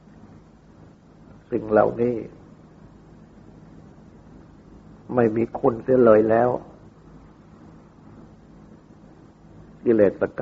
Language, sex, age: Thai, male, 60-79